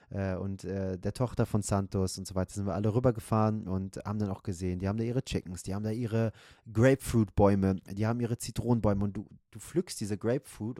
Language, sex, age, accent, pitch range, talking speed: German, male, 30-49, German, 110-130 Hz, 210 wpm